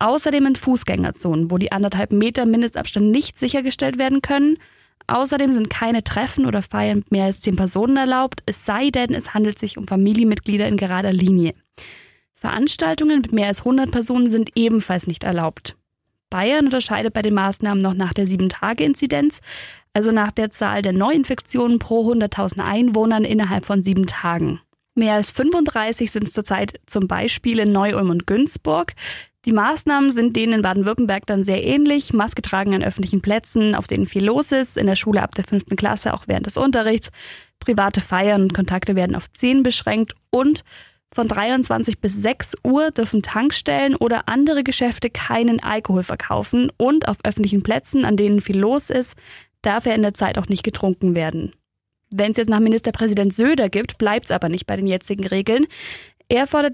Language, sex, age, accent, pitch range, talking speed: German, female, 20-39, German, 195-250 Hz, 175 wpm